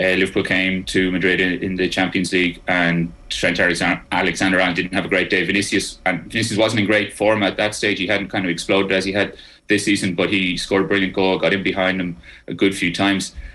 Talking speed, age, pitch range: 235 wpm, 30-49, 90-100 Hz